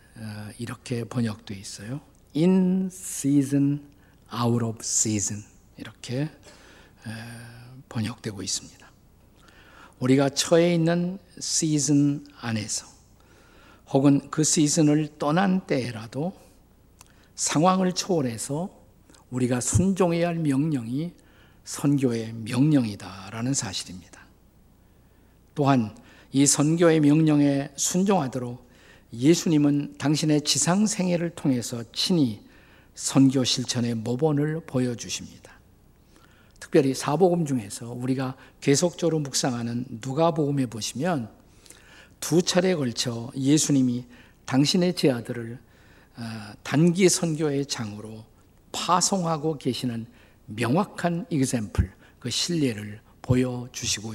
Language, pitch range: Korean, 115-155 Hz